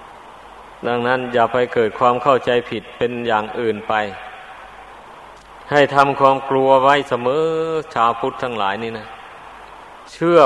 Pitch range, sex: 125-145 Hz, male